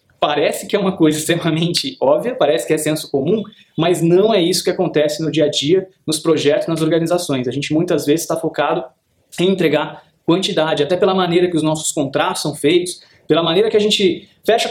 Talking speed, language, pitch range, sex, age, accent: 205 wpm, Portuguese, 155-180 Hz, male, 20-39, Brazilian